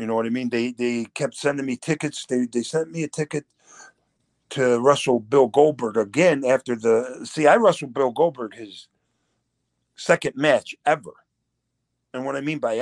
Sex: male